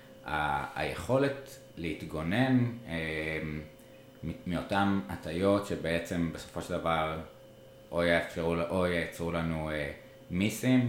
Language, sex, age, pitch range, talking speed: Hebrew, male, 20-39, 80-105 Hz, 95 wpm